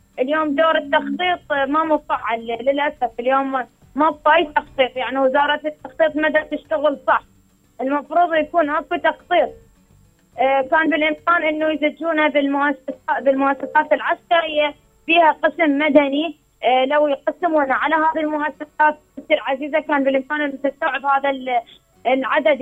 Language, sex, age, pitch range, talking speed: Arabic, female, 20-39, 275-315 Hz, 110 wpm